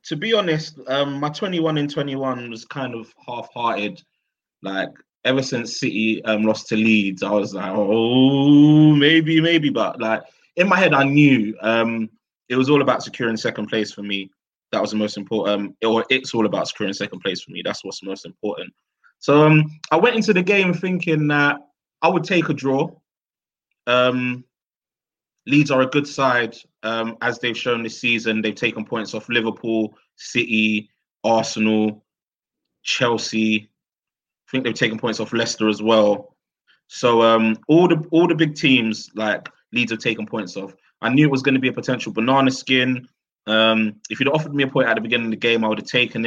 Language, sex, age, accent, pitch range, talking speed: English, male, 20-39, British, 110-140 Hz, 190 wpm